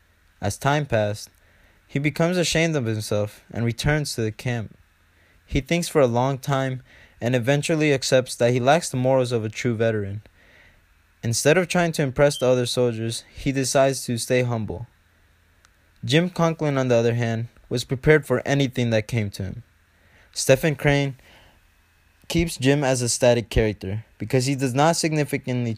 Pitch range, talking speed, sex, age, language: 105-140 Hz, 165 wpm, male, 20-39, English